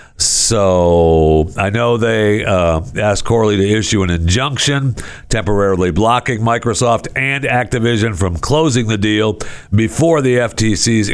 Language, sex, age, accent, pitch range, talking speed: English, male, 60-79, American, 85-110 Hz, 125 wpm